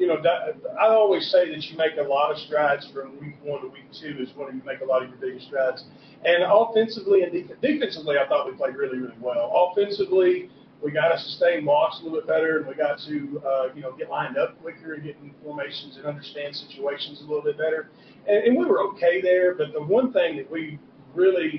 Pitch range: 140-175 Hz